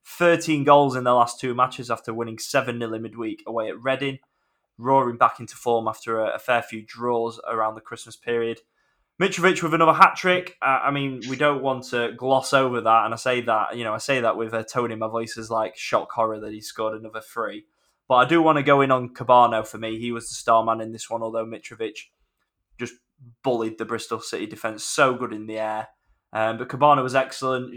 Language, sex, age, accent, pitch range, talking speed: English, male, 10-29, British, 115-130 Hz, 225 wpm